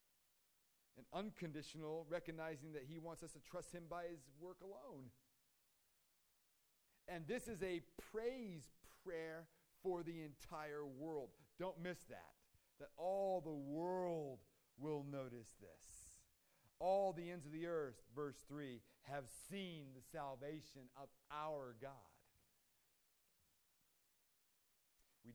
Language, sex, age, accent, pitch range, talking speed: English, male, 40-59, American, 125-165 Hz, 120 wpm